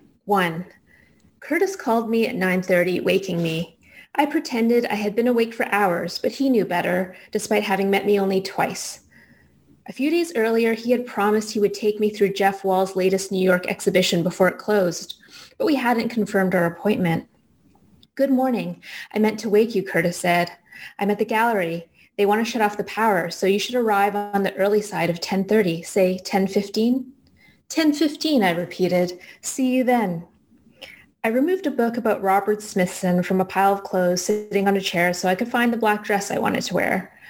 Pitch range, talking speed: 185-225 Hz, 190 wpm